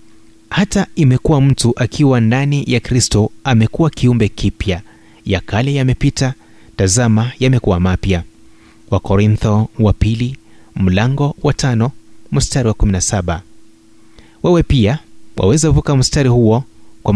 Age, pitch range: 30-49, 105-140 Hz